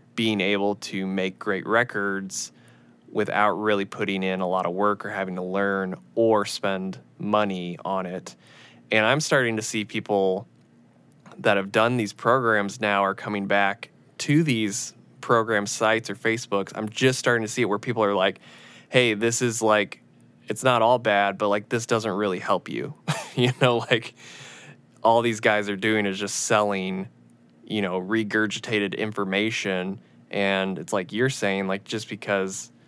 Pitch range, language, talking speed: 95-115 Hz, English, 170 wpm